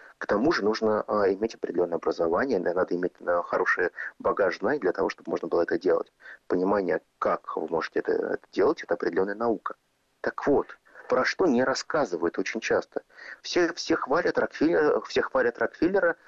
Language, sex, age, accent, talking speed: Russian, male, 30-49, native, 160 wpm